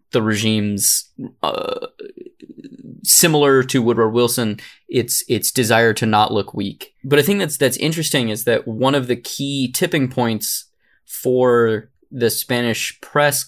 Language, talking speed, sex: English, 145 wpm, male